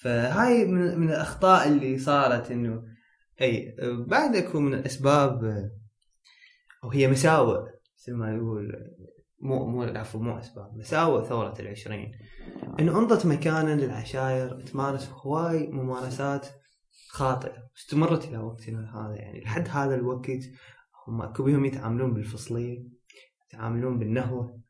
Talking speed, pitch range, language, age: 115 wpm, 120-155 Hz, Arabic, 20-39